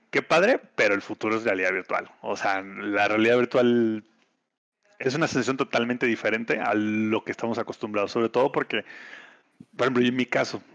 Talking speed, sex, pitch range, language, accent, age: 175 wpm, male, 115-140 Hz, Spanish, Mexican, 30-49